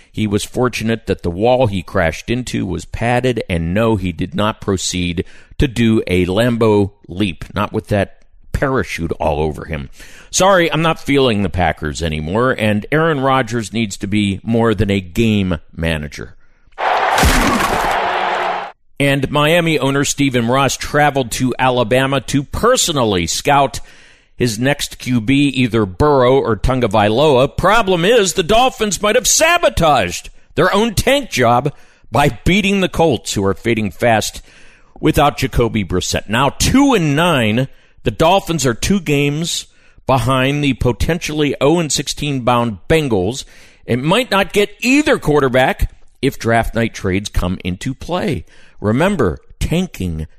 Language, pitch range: English, 100-145 Hz